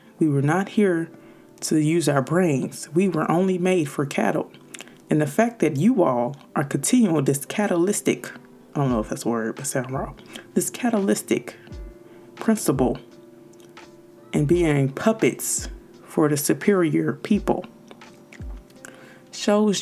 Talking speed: 135 wpm